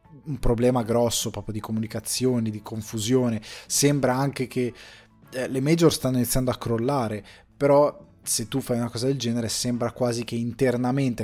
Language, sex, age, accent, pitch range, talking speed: Italian, male, 20-39, native, 105-130 Hz, 155 wpm